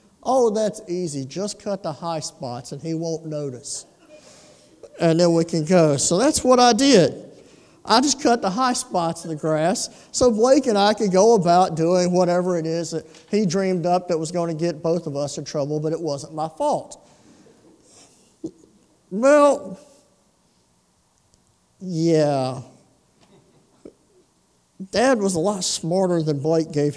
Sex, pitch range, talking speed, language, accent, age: male, 155-210 Hz, 160 wpm, English, American, 50-69